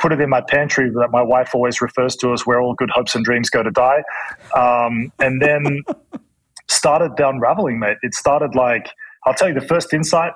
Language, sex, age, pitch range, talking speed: English, male, 20-39, 120-145 Hz, 210 wpm